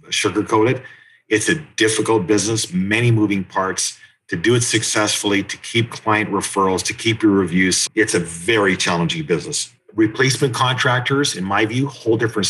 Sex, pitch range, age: male, 95-125 Hz, 40-59